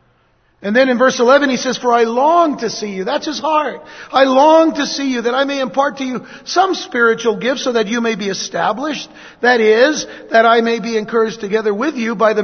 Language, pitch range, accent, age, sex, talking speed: English, 205-265 Hz, American, 50-69, male, 230 wpm